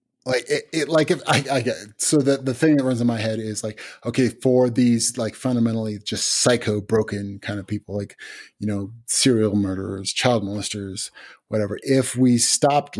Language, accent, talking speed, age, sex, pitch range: English, American, 195 wpm, 30-49, male, 105-120 Hz